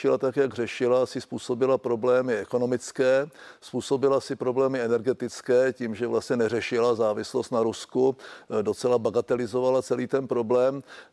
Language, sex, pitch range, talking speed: Czech, male, 115-130 Hz, 125 wpm